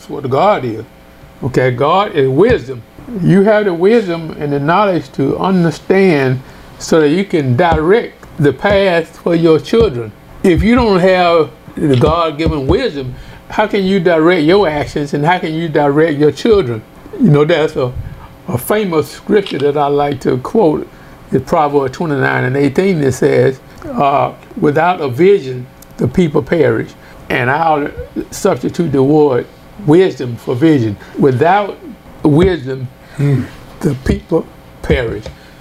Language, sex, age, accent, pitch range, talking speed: English, male, 60-79, American, 135-170 Hz, 145 wpm